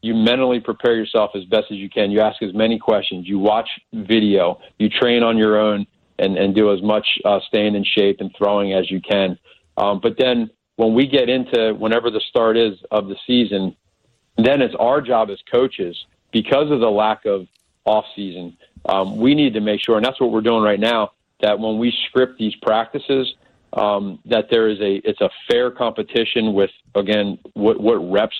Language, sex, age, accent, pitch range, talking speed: English, male, 40-59, American, 105-120 Hz, 200 wpm